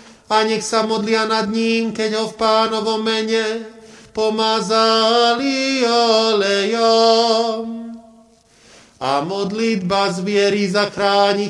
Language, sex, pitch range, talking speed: Slovak, male, 200-225 Hz, 95 wpm